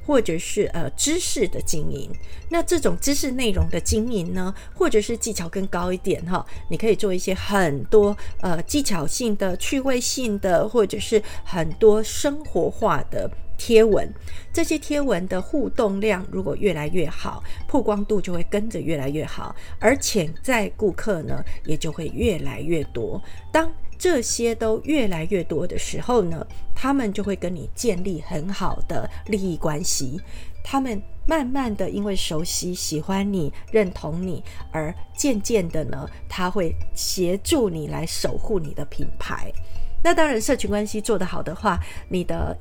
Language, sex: Chinese, female